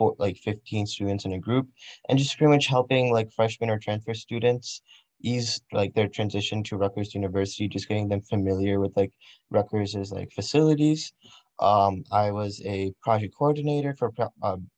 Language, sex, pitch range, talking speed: English, male, 100-115 Hz, 170 wpm